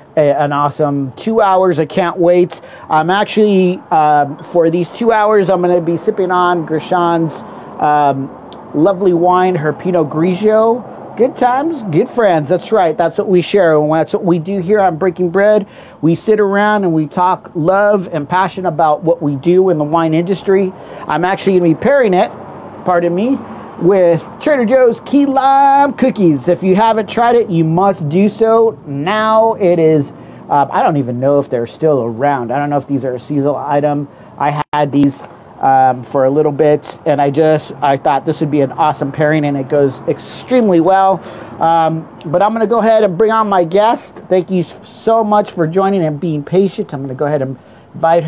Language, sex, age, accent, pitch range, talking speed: English, male, 40-59, American, 150-200 Hz, 195 wpm